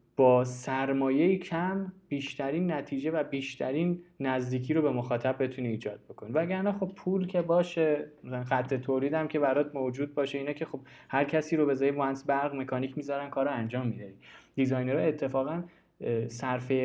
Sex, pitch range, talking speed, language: male, 125-155 Hz, 155 wpm, Persian